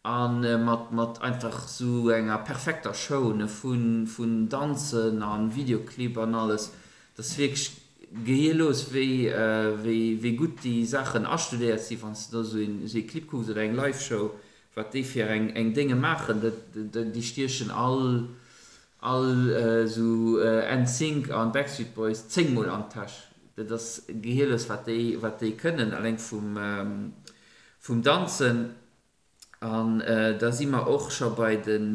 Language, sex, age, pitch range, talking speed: English, male, 50-69, 110-140 Hz, 155 wpm